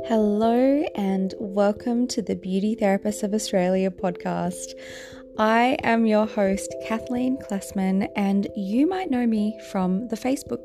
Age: 20-39